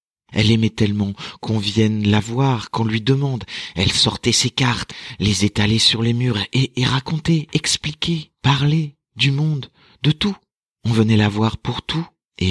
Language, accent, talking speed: French, French, 170 wpm